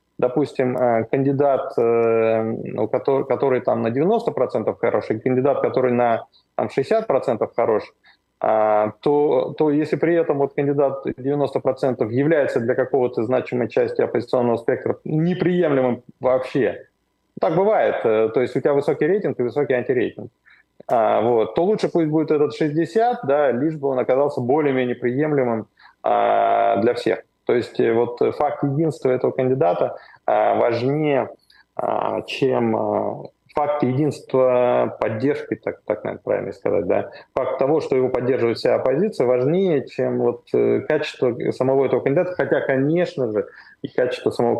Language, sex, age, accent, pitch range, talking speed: Russian, male, 20-39, native, 125-155 Hz, 130 wpm